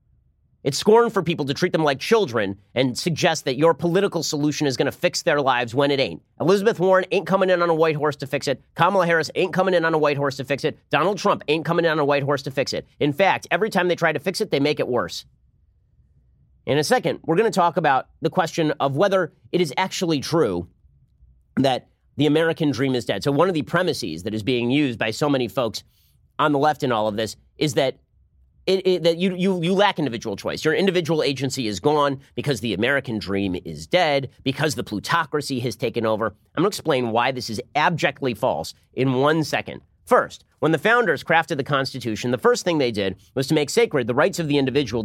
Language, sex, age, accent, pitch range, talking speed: English, male, 30-49, American, 120-170 Hz, 235 wpm